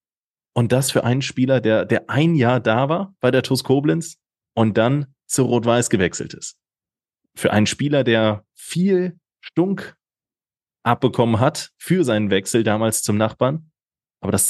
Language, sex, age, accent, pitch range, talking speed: German, male, 30-49, German, 110-135 Hz, 155 wpm